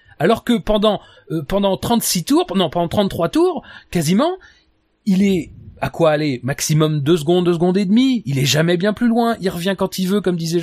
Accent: French